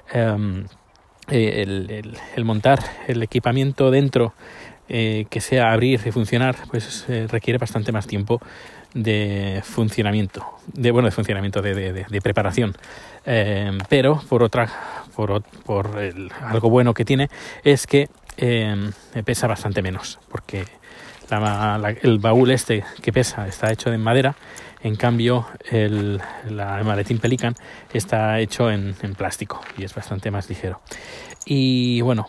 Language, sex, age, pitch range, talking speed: Spanish, male, 20-39, 105-125 Hz, 145 wpm